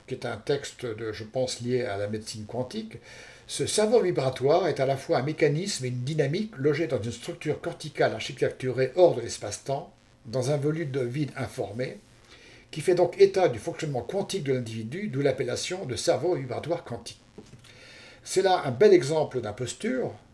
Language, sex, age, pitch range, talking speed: French, male, 60-79, 120-155 Hz, 175 wpm